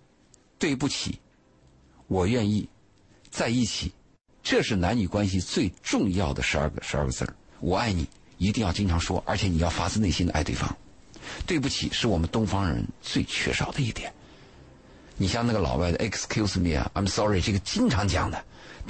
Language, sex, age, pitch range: Chinese, male, 50-69, 85-125 Hz